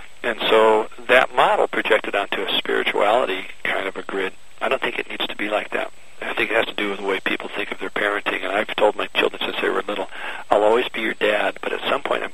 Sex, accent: male, American